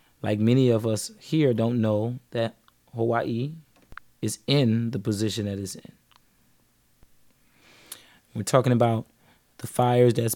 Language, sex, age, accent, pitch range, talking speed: English, male, 20-39, American, 115-125 Hz, 125 wpm